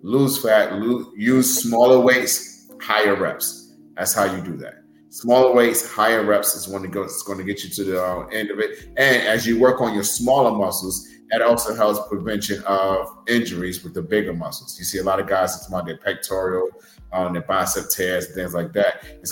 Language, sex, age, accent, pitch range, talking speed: English, male, 30-49, American, 100-115 Hz, 215 wpm